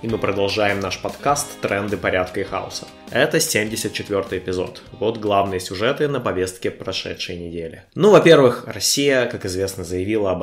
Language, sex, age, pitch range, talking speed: Russian, male, 20-39, 95-120 Hz, 150 wpm